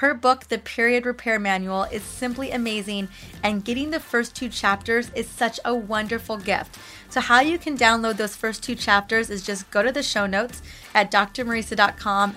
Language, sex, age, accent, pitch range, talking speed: English, female, 20-39, American, 205-245 Hz, 185 wpm